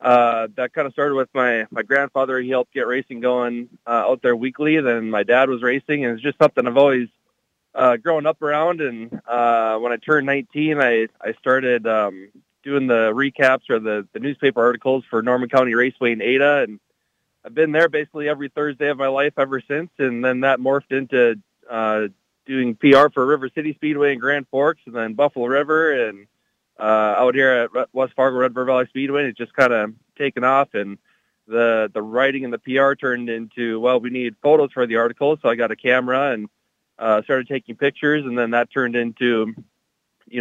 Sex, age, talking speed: male, 20-39, 200 wpm